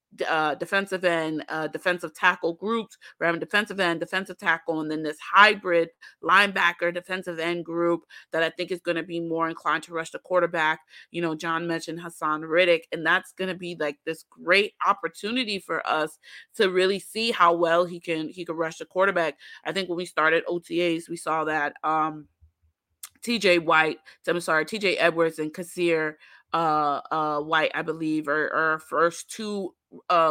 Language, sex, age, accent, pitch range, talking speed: English, female, 30-49, American, 160-185 Hz, 180 wpm